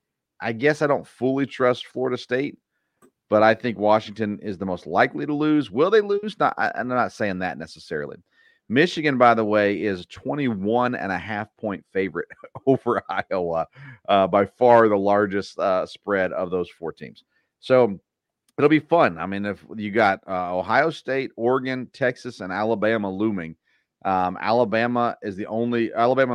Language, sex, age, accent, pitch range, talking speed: English, male, 40-59, American, 100-125 Hz, 170 wpm